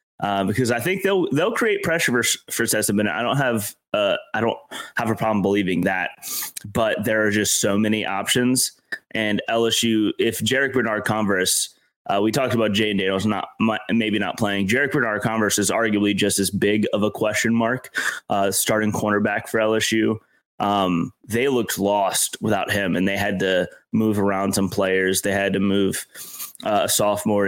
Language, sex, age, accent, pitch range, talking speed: English, male, 20-39, American, 100-115 Hz, 185 wpm